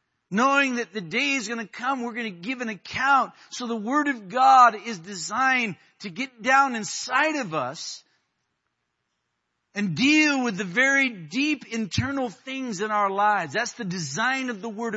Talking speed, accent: 175 wpm, American